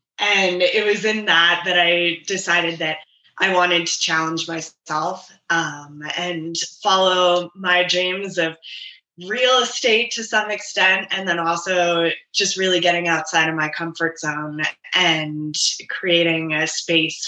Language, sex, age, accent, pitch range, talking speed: English, female, 20-39, American, 165-185 Hz, 140 wpm